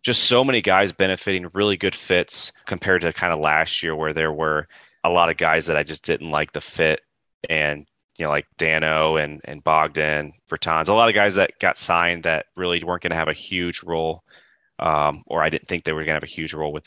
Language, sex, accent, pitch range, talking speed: English, male, American, 80-95 Hz, 240 wpm